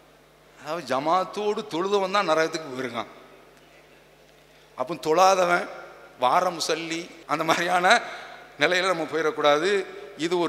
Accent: Indian